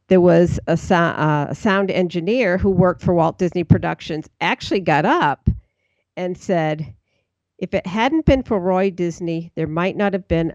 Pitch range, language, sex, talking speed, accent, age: 160-200 Hz, English, female, 170 wpm, American, 50-69